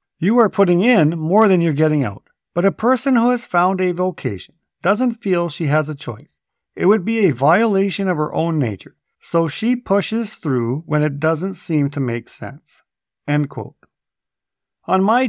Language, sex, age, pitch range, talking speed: English, male, 50-69, 135-195 Hz, 185 wpm